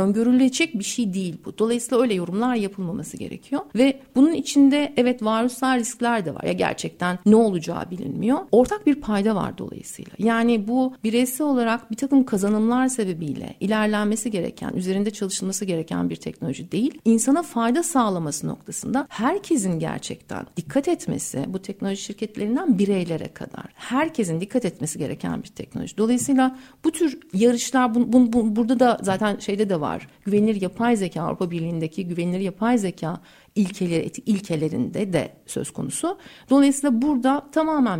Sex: female